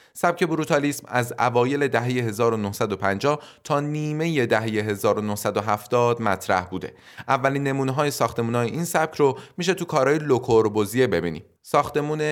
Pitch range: 115-145 Hz